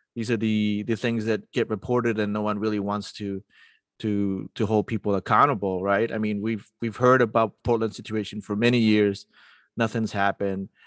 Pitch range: 105-120 Hz